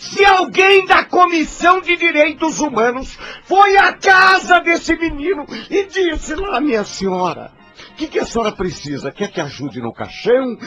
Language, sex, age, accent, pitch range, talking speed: Portuguese, male, 60-79, Brazilian, 165-260 Hz, 150 wpm